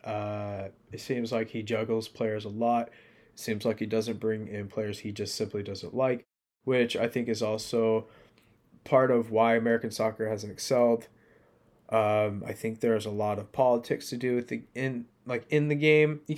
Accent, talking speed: American, 185 wpm